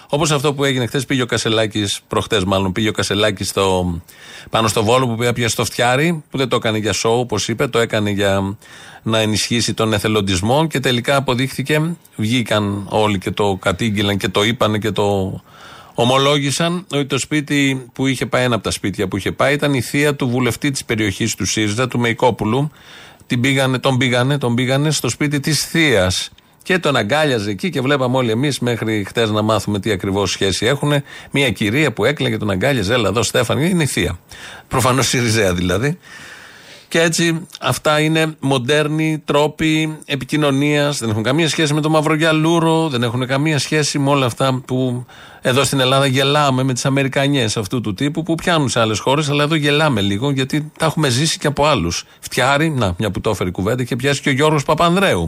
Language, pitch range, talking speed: Greek, 110-145 Hz, 190 wpm